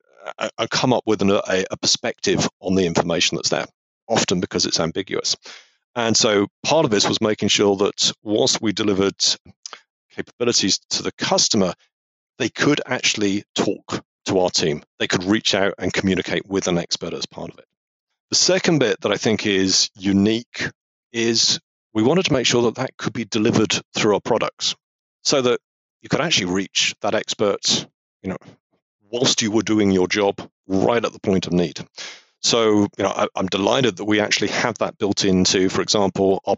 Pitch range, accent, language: 95-115 Hz, British, English